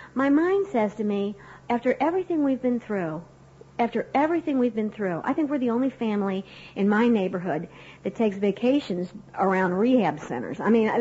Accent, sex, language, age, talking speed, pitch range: American, female, English, 50-69, 175 wpm, 180-235 Hz